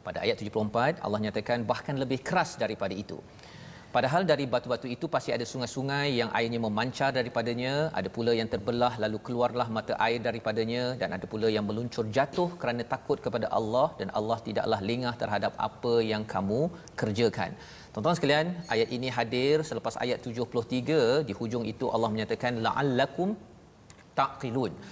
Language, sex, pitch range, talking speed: Malayalam, male, 115-150 Hz, 155 wpm